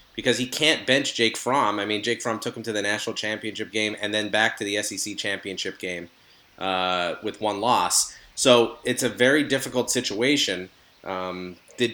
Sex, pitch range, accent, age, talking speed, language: male, 100-125 Hz, American, 30-49, 185 wpm, English